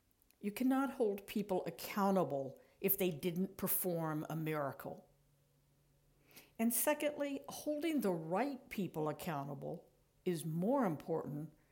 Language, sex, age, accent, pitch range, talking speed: English, female, 60-79, American, 170-235 Hz, 110 wpm